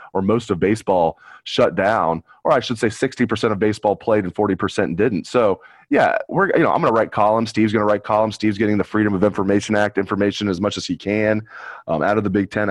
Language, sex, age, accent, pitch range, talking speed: English, male, 30-49, American, 90-110 Hz, 240 wpm